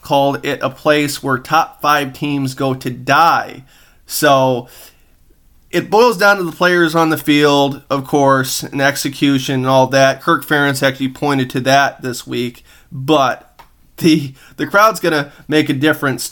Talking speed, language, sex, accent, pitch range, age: 165 wpm, English, male, American, 130-155 Hz, 30-49